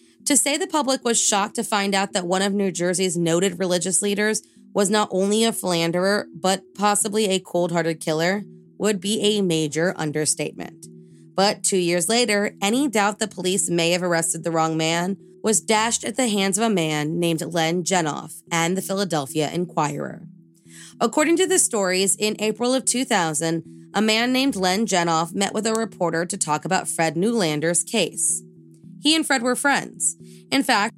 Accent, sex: American, female